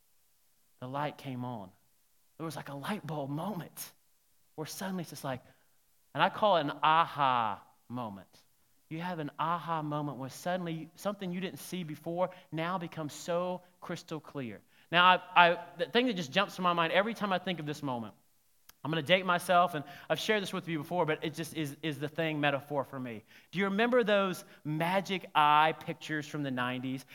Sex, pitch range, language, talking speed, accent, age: male, 150-185 Hz, English, 200 wpm, American, 30-49